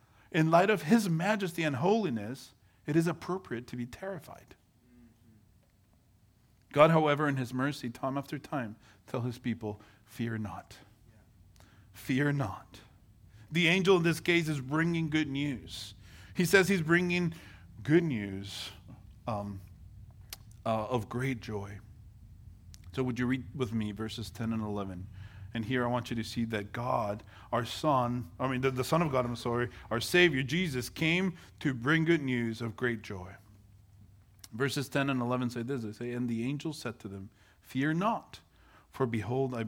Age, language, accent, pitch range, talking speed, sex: 40-59, English, American, 105-140 Hz, 165 wpm, male